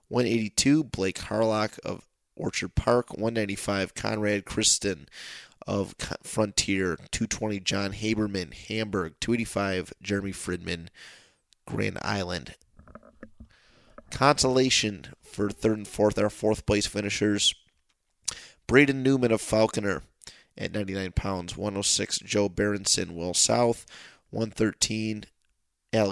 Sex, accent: male, American